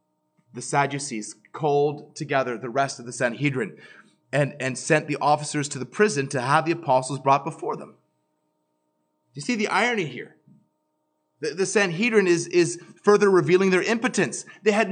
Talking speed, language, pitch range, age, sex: 160 wpm, English, 155-220 Hz, 30-49, male